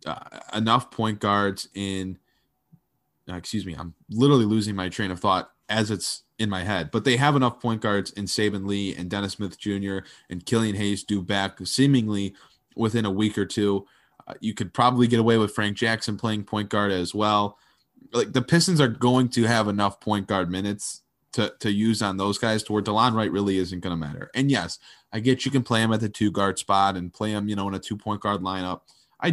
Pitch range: 95-110 Hz